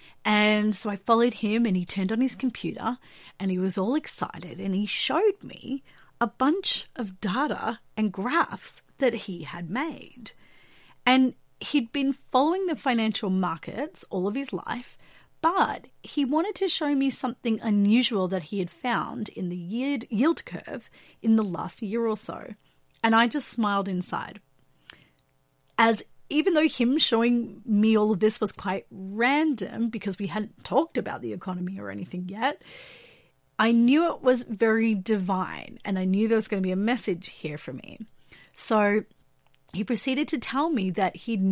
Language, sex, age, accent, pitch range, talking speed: English, female, 30-49, Australian, 195-255 Hz, 170 wpm